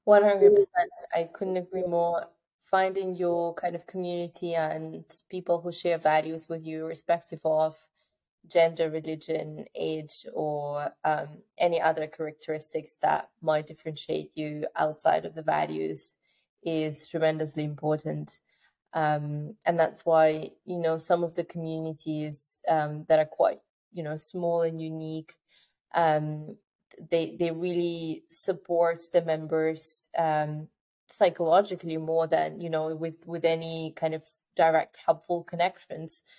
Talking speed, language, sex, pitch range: 130 wpm, English, female, 155-170 Hz